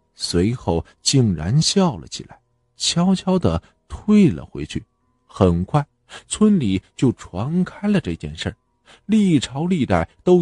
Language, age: Chinese, 50-69